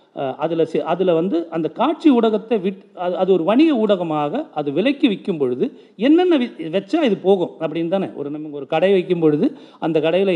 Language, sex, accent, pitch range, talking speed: Tamil, male, native, 160-225 Hz, 180 wpm